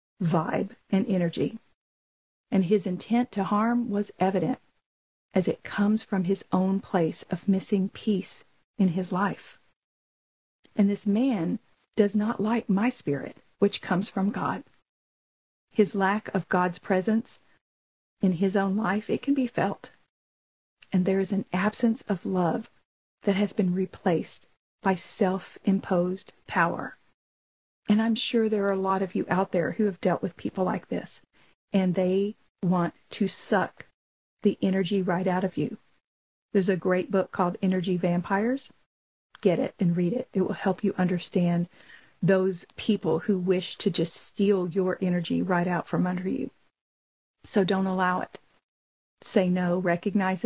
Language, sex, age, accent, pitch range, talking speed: English, female, 40-59, American, 180-205 Hz, 155 wpm